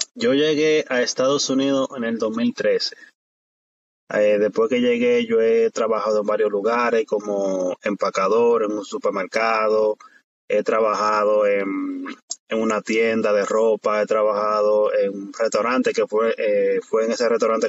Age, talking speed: 20-39, 145 wpm